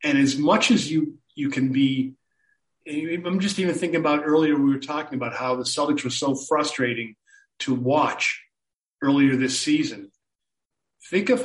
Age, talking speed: 40-59, 170 wpm